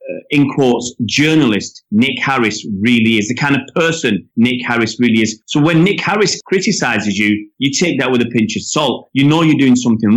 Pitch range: 125-185 Hz